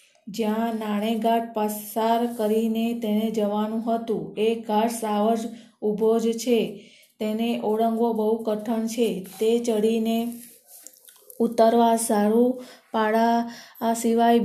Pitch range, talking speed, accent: 215-230 Hz, 60 wpm, native